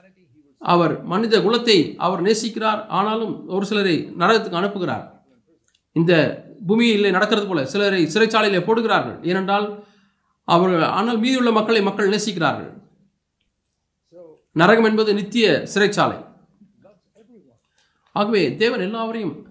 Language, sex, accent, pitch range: Tamil, male, native, 170-215 Hz